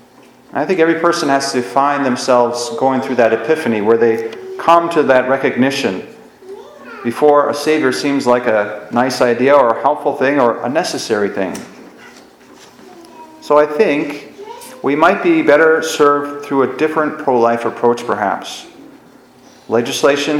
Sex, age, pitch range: male, 40-59, 120-145 Hz